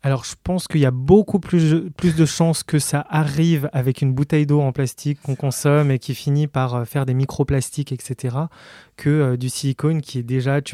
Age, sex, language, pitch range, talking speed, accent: 20-39, male, French, 125-145 Hz, 210 wpm, French